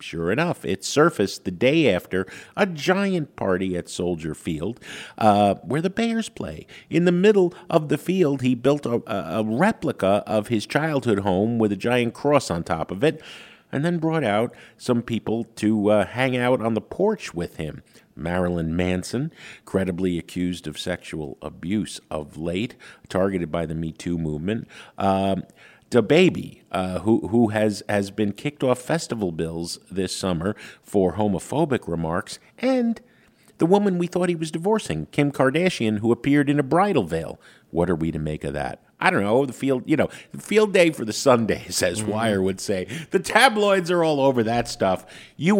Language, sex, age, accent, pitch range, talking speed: English, male, 50-69, American, 90-145 Hz, 180 wpm